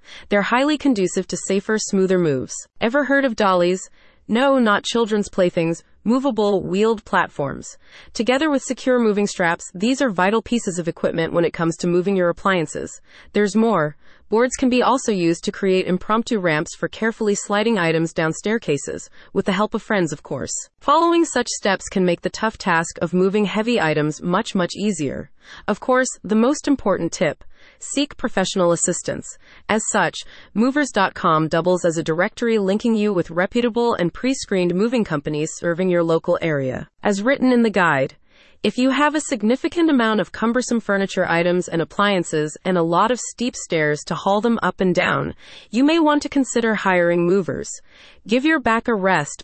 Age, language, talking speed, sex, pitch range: 30-49, English, 175 wpm, female, 175-235 Hz